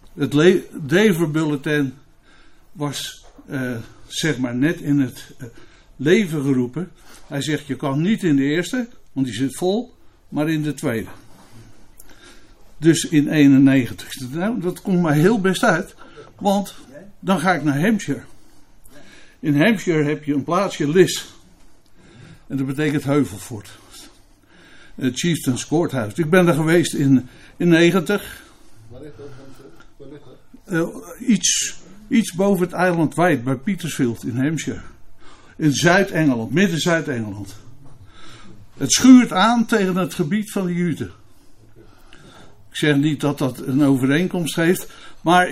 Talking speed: 130 wpm